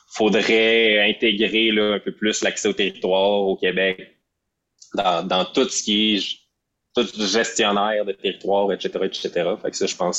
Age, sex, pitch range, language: 20-39, male, 90-110 Hz, French